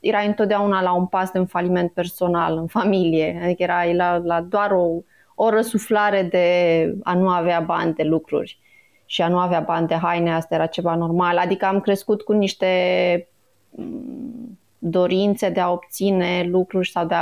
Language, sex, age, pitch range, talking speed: Romanian, female, 20-39, 170-200 Hz, 170 wpm